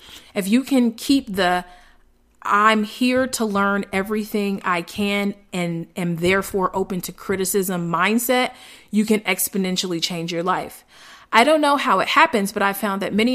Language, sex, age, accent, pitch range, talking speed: English, female, 30-49, American, 180-225 Hz, 160 wpm